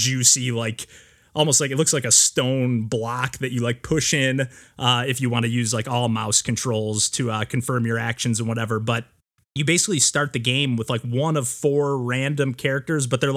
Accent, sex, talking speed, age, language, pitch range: American, male, 210 wpm, 30-49, English, 120-145 Hz